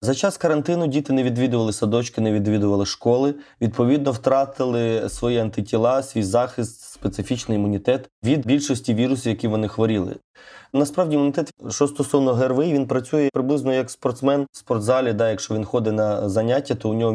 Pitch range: 110-140 Hz